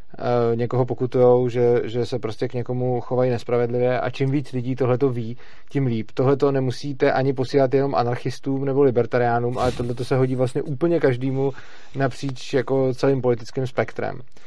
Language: Czech